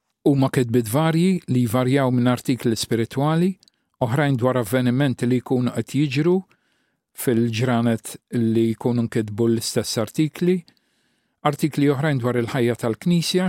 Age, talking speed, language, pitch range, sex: 50-69, 110 wpm, English, 115-145 Hz, male